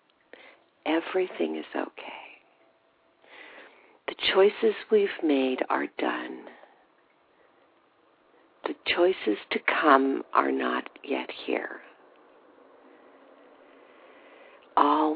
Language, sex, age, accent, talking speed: English, female, 50-69, American, 70 wpm